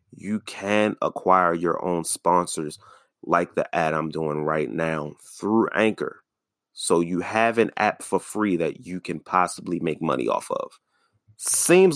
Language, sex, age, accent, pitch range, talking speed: English, male, 30-49, American, 85-110 Hz, 155 wpm